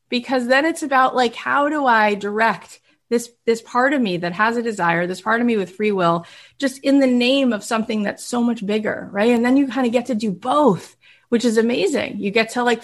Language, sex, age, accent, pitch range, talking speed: English, female, 30-49, American, 185-240 Hz, 245 wpm